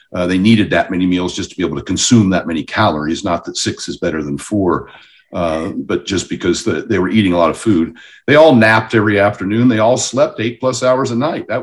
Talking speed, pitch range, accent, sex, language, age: 250 wpm, 100-130 Hz, American, male, English, 50-69